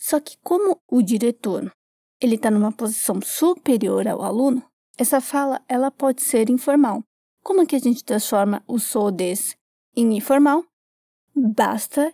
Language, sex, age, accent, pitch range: Japanese, female, 20-39, Brazilian, 235-280 Hz